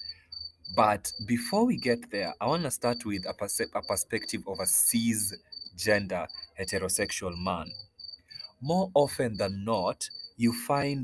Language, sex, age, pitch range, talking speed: English, male, 30-49, 95-120 Hz, 135 wpm